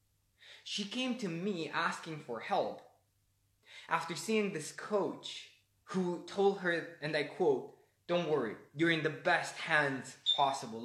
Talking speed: 140 wpm